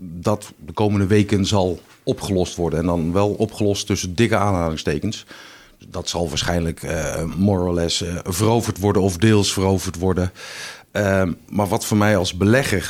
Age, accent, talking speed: 50-69, Dutch, 165 wpm